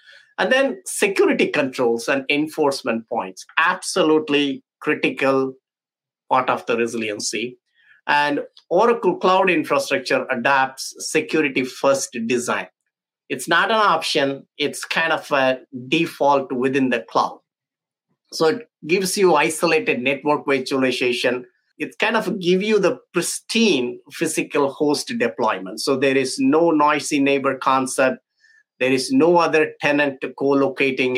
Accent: Indian